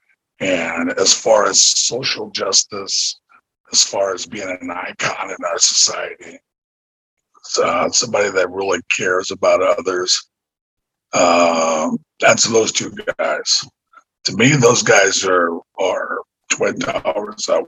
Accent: American